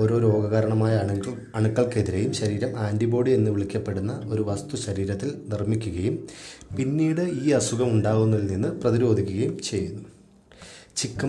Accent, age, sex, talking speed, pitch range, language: native, 30-49, male, 105 wpm, 105-130 Hz, Malayalam